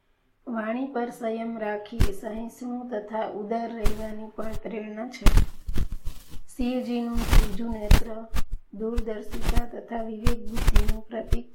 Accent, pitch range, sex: native, 205-225 Hz, female